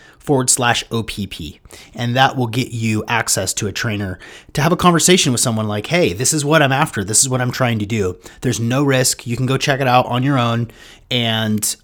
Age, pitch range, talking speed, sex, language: 30-49, 110-140 Hz, 230 wpm, male, English